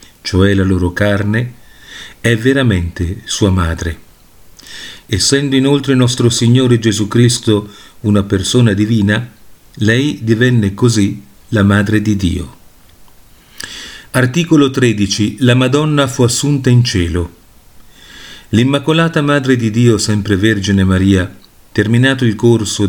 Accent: native